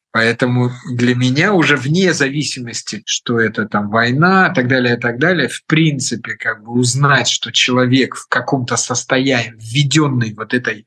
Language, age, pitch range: Russian, 50-69, 125-160 Hz